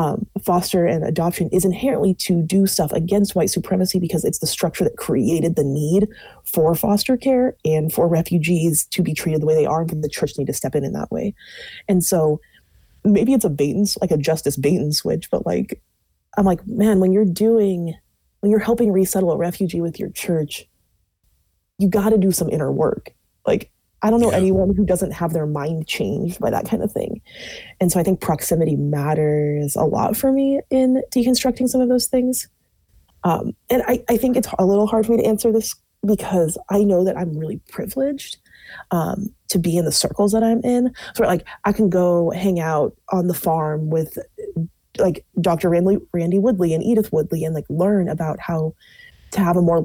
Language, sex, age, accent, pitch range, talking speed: English, female, 20-39, American, 160-210 Hz, 205 wpm